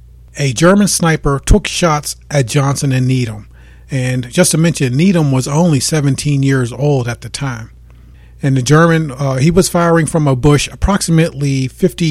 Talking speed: 170 wpm